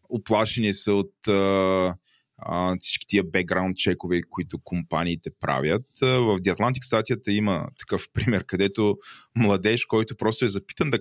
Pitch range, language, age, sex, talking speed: 90-110 Hz, Bulgarian, 20-39, male, 130 wpm